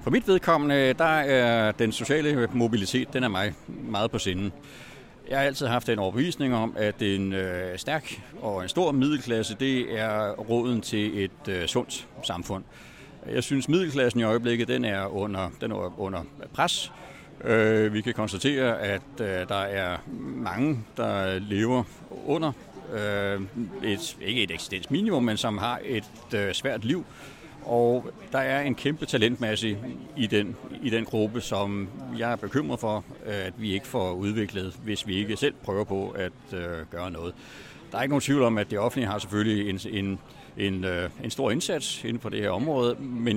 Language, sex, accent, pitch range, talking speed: Danish, male, native, 100-120 Hz, 165 wpm